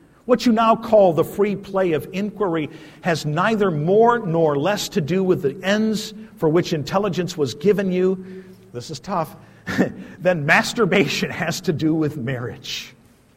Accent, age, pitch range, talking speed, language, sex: American, 50-69, 150-220 Hz, 155 wpm, English, male